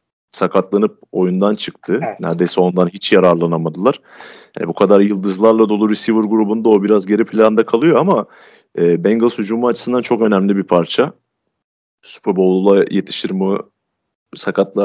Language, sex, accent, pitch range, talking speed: Turkish, male, native, 95-125 Hz, 130 wpm